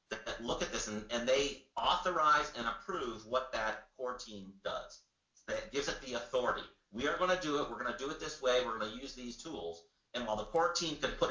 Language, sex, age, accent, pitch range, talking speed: English, male, 40-59, American, 105-140 Hz, 235 wpm